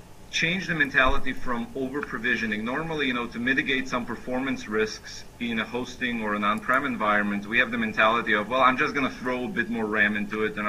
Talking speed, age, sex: 210 wpm, 40-59, male